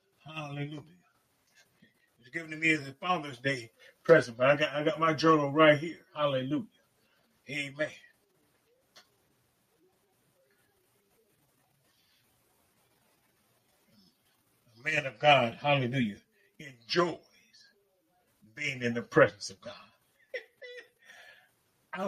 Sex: male